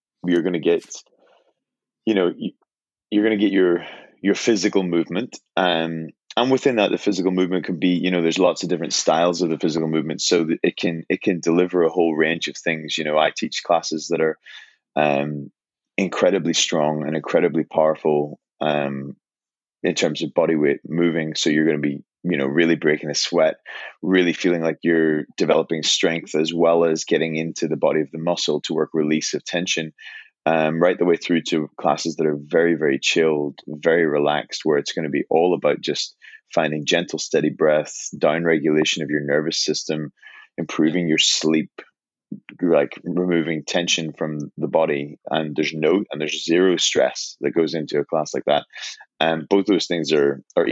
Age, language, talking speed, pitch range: 20-39, English, 190 wpm, 75-85 Hz